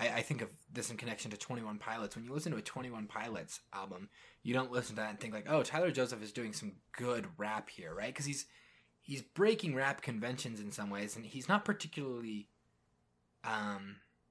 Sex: male